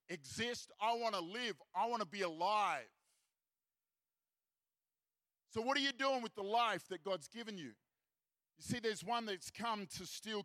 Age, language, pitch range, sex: 50-69, English, 180-220 Hz, male